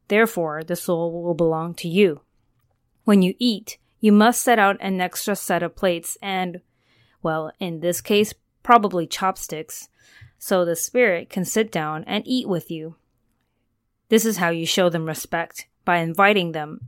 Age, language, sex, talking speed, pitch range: 20-39, English, female, 165 wpm, 165-210 Hz